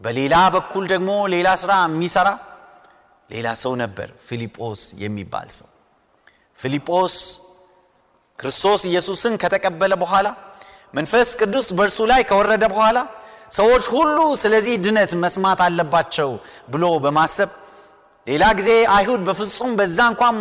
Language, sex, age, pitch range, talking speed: Amharic, male, 30-49, 165-235 Hz, 105 wpm